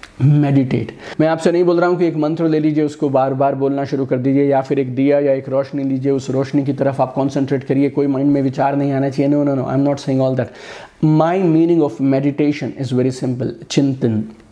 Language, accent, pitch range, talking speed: Hindi, native, 130-160 Hz, 205 wpm